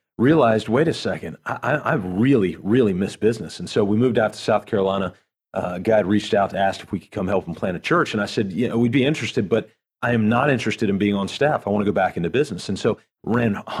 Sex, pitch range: male, 100-120 Hz